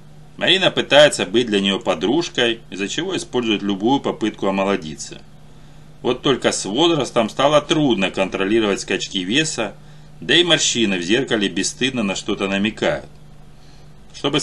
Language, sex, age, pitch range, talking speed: Russian, male, 30-49, 100-150 Hz, 130 wpm